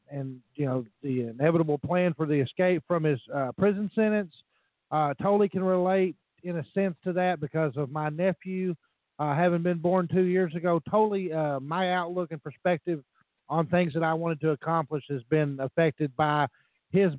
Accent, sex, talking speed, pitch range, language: American, male, 180 wpm, 155-190 Hz, English